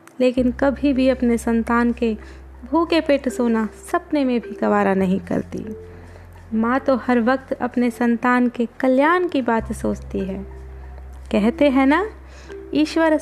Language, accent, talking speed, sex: Hindi, native, 140 wpm, female